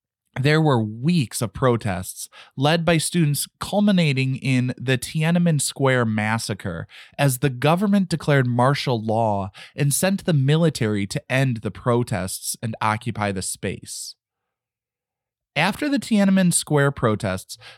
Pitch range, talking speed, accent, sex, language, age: 115-165 Hz, 125 wpm, American, male, English, 20-39